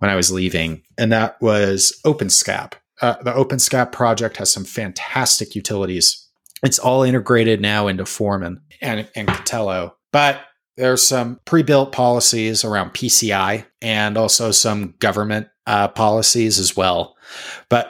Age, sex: 30-49, male